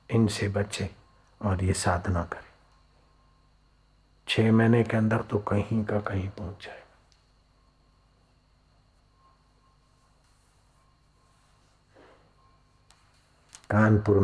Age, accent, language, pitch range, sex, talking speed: 60-79, native, Hindi, 95-105 Hz, male, 70 wpm